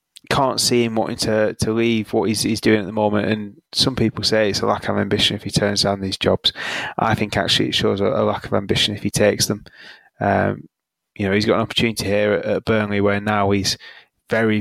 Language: English